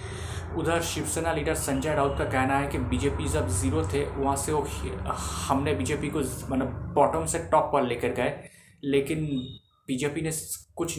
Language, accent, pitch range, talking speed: Hindi, native, 95-145 Hz, 165 wpm